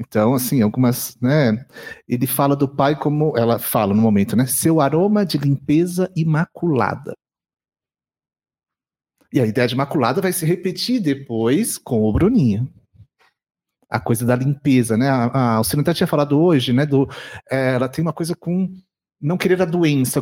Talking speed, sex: 155 wpm, male